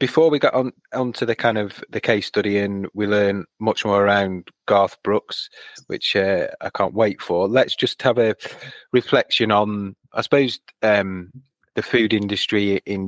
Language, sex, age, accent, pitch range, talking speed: English, male, 30-49, British, 100-110 Hz, 175 wpm